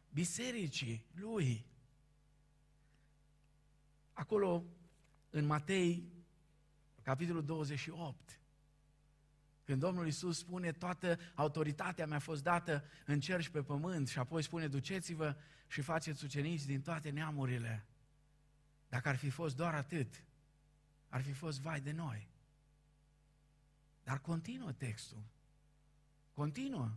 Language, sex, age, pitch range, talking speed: Romanian, male, 50-69, 145-215 Hz, 105 wpm